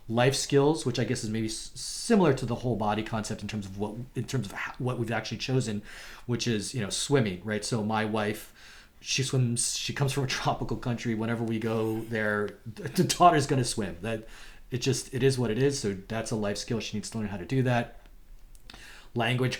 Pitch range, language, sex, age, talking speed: 105-125 Hz, English, male, 30-49, 215 wpm